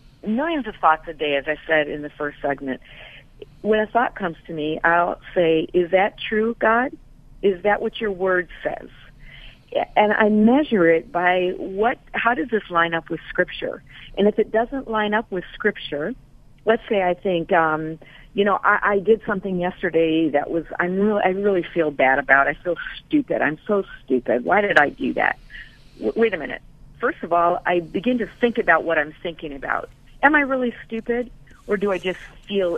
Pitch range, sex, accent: 160-220 Hz, female, American